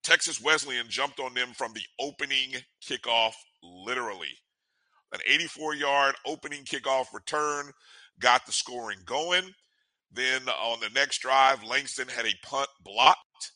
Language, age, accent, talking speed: English, 50-69, American, 130 wpm